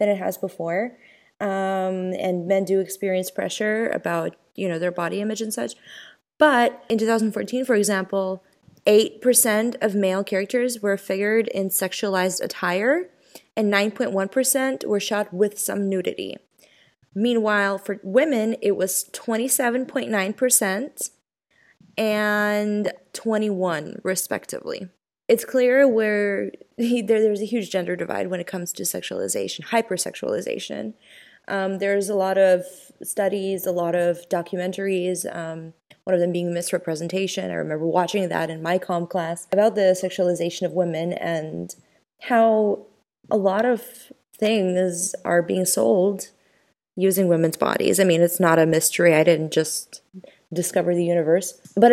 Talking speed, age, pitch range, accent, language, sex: 135 wpm, 20-39, 180-220 Hz, American, English, female